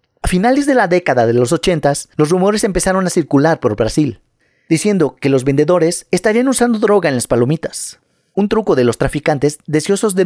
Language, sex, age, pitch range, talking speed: Spanish, male, 40-59, 135-185 Hz, 185 wpm